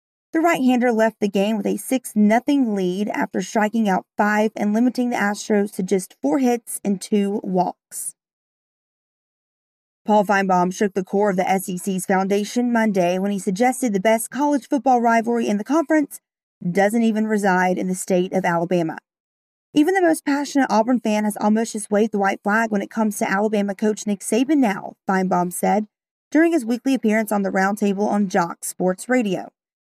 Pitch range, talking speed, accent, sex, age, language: 195-250 Hz, 175 wpm, American, female, 30-49, English